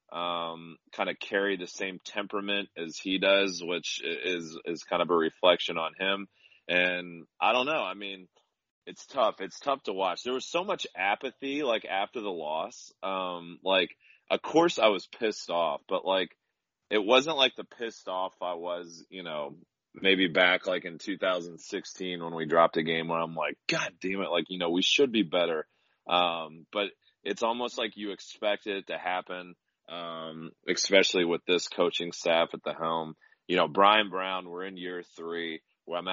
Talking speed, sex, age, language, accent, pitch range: 190 wpm, male, 30-49, English, American, 80-100 Hz